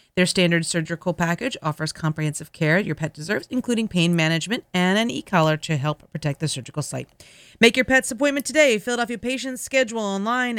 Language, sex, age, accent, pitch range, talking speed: English, female, 30-49, American, 160-215 Hz, 175 wpm